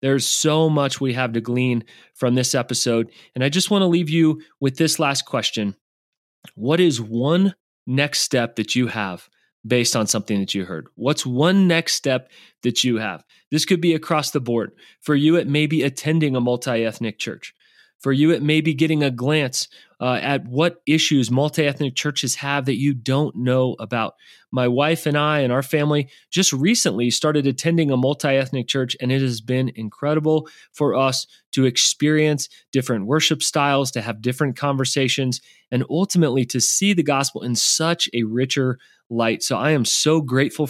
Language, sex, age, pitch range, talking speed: English, male, 30-49, 120-150 Hz, 180 wpm